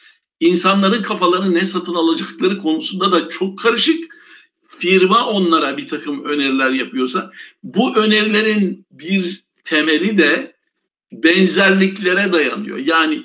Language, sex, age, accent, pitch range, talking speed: Turkish, male, 60-79, native, 180-295 Hz, 105 wpm